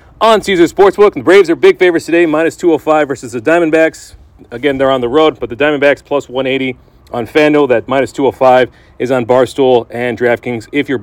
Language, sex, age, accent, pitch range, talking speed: English, male, 40-59, American, 135-185 Hz, 200 wpm